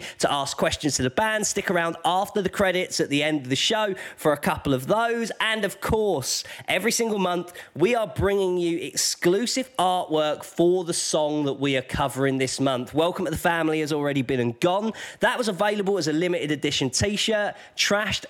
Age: 20-39